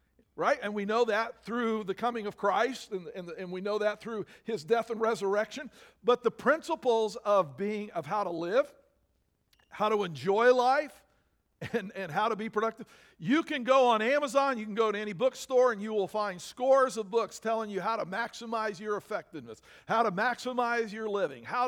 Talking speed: 195 wpm